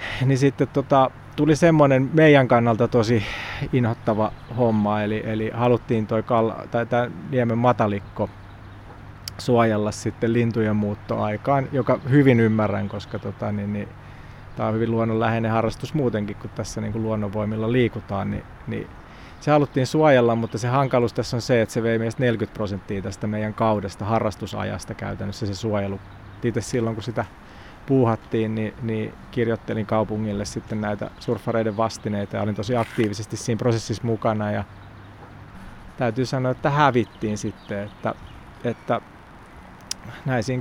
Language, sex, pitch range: Finnish, male, 105-125 Hz